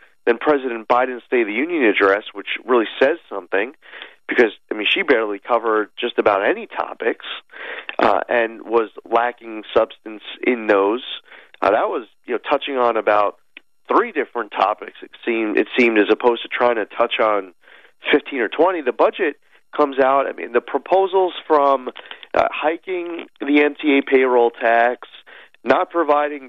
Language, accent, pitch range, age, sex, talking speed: English, American, 110-140 Hz, 40-59, male, 160 wpm